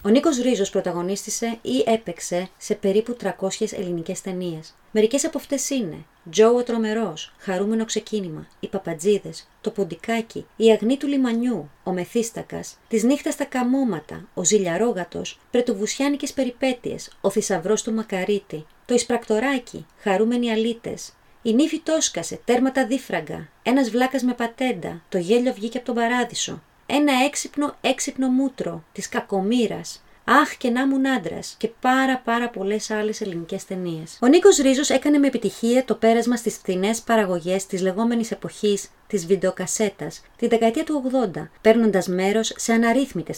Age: 30-49